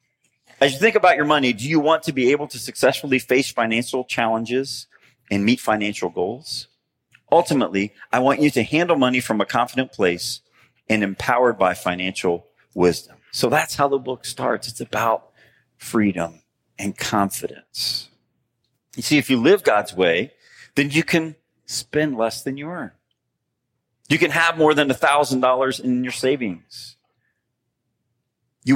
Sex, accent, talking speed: male, American, 150 wpm